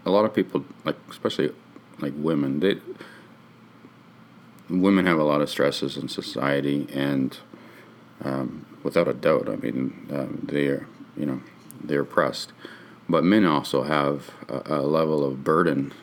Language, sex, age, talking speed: English, male, 40-59, 145 wpm